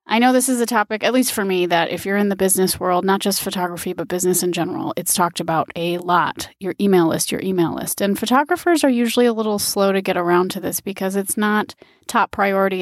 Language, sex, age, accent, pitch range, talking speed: English, female, 30-49, American, 180-220 Hz, 245 wpm